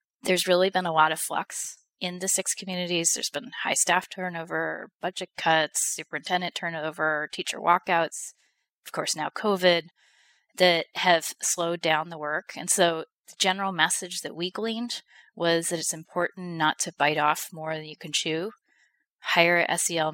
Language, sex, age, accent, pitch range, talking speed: English, female, 30-49, American, 160-190 Hz, 165 wpm